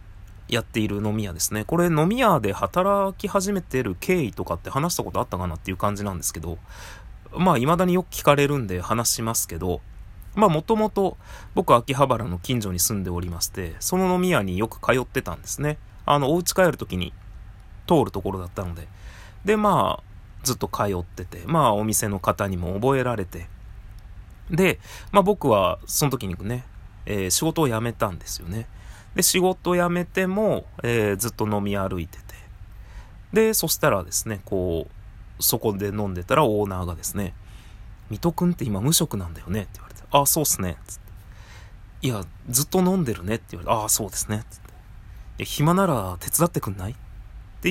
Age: 30-49